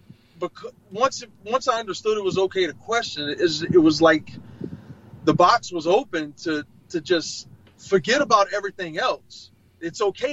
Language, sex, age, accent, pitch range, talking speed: English, male, 30-49, American, 155-215 Hz, 165 wpm